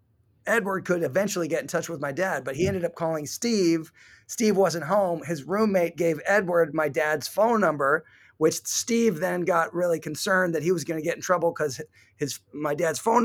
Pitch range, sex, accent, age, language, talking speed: 145-185 Hz, male, American, 30-49, English, 200 wpm